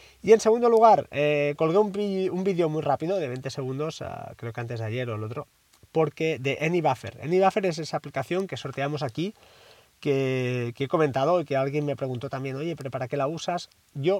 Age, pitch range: 30-49, 125-165 Hz